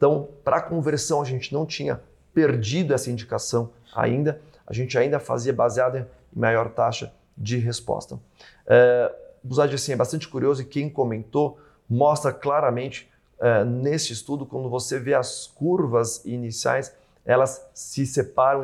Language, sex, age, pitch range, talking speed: Portuguese, male, 30-49, 120-145 Hz, 140 wpm